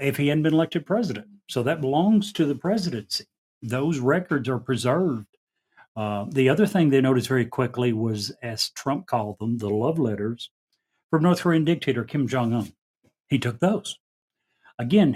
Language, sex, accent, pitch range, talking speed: English, male, American, 115-145 Hz, 165 wpm